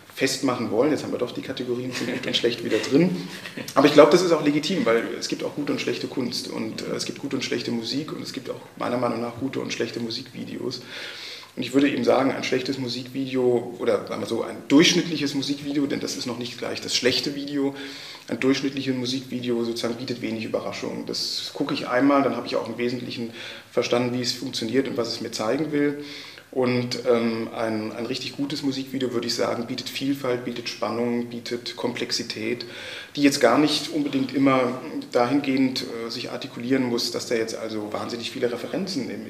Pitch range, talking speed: 120-140 Hz, 200 wpm